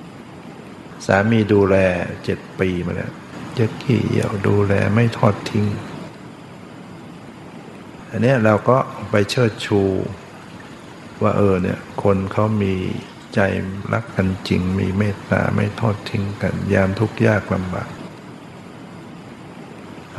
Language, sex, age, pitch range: Thai, male, 60-79, 95-110 Hz